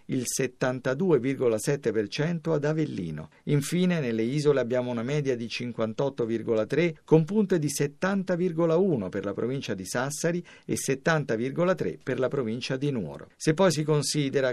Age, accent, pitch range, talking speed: 50-69, native, 115-160 Hz, 130 wpm